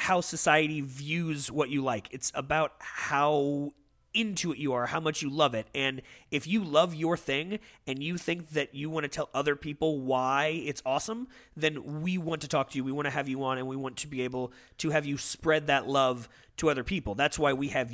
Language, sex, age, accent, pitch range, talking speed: English, male, 30-49, American, 130-160 Hz, 230 wpm